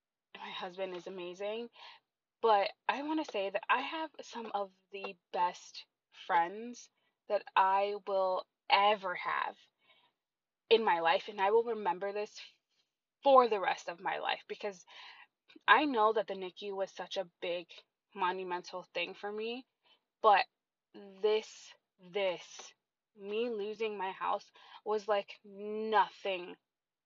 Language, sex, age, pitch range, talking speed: English, female, 20-39, 190-245 Hz, 135 wpm